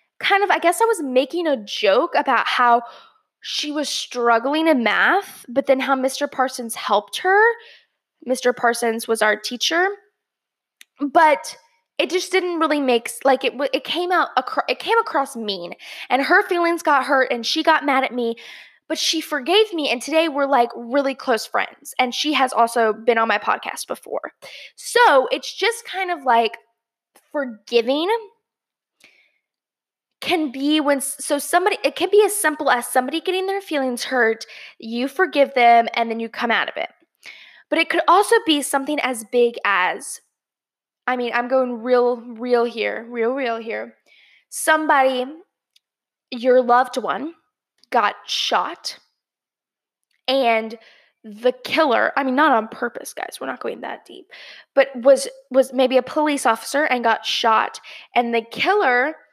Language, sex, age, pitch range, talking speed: English, female, 10-29, 240-325 Hz, 160 wpm